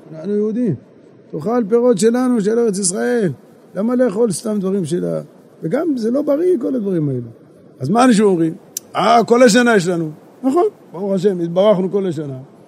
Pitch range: 155-205 Hz